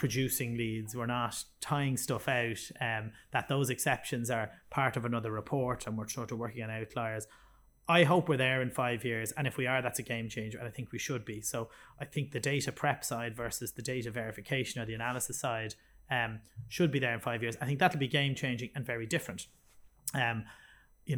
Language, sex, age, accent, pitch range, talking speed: English, male, 30-49, Irish, 115-140 Hz, 220 wpm